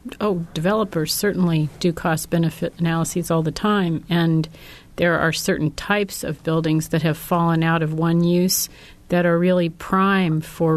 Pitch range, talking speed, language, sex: 150-170 Hz, 155 wpm, English, female